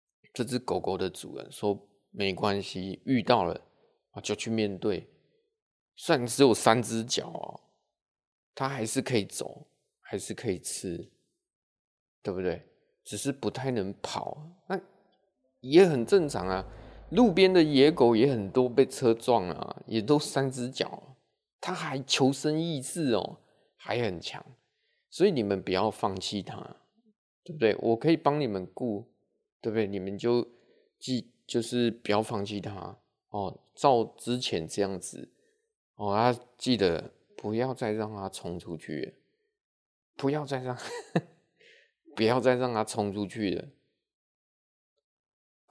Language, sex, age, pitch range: Chinese, male, 20-39, 100-145 Hz